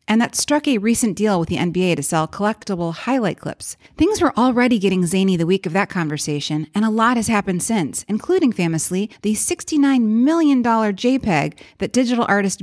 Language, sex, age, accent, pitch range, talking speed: English, female, 30-49, American, 185-255 Hz, 185 wpm